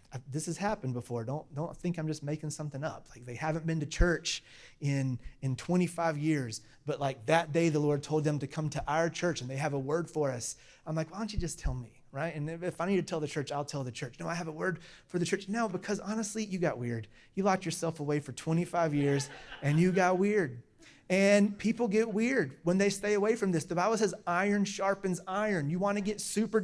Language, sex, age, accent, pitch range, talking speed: English, male, 30-49, American, 145-200 Hz, 245 wpm